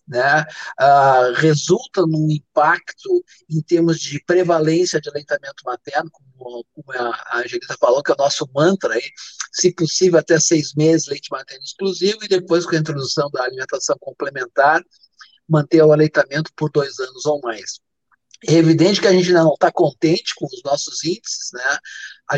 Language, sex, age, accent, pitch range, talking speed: Portuguese, male, 50-69, Brazilian, 150-185 Hz, 160 wpm